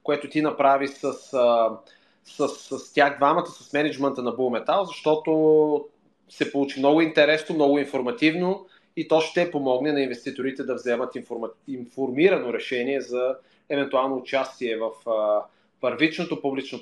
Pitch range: 135-165 Hz